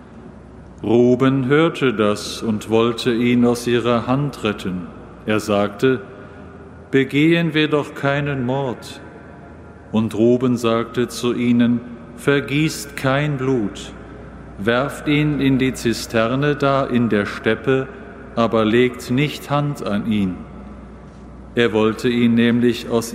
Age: 50-69